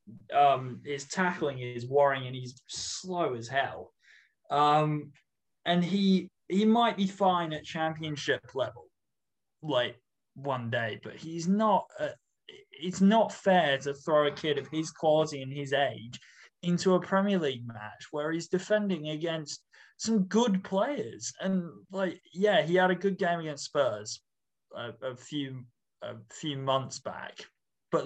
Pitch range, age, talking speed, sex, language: 135-180 Hz, 20-39, 150 wpm, male, English